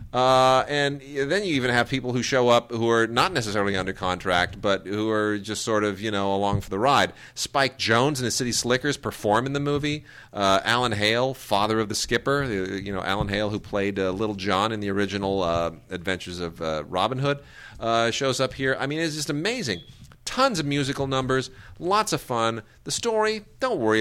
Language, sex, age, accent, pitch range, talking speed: English, male, 40-59, American, 100-130 Hz, 205 wpm